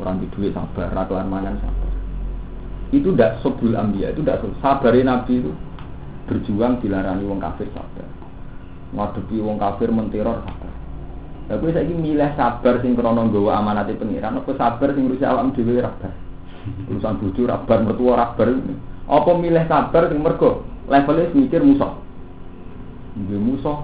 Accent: native